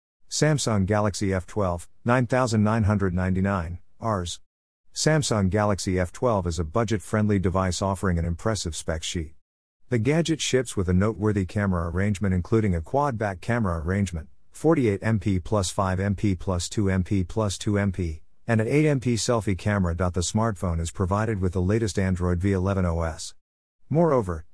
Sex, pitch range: male, 90-115 Hz